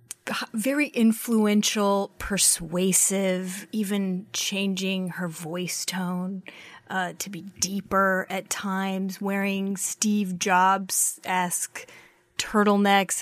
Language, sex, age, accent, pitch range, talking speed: English, female, 30-49, American, 180-215 Hz, 85 wpm